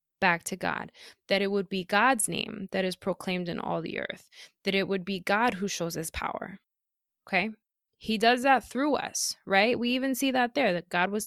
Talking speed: 215 wpm